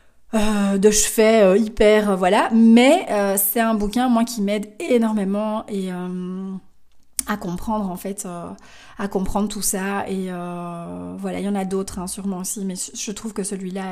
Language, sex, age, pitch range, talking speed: French, female, 30-49, 195-235 Hz, 185 wpm